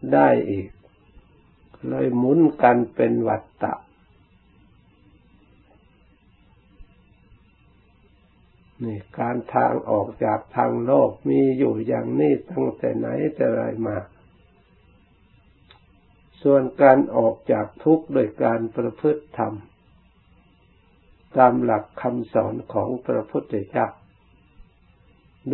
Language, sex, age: Thai, male, 60-79